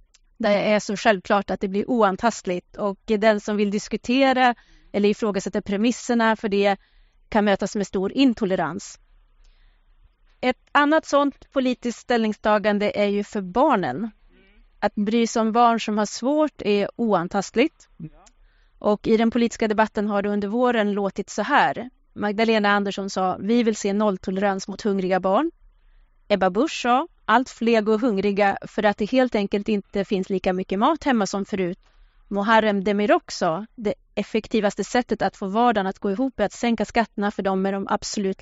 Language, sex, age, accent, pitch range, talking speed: Swedish, female, 30-49, native, 195-235 Hz, 165 wpm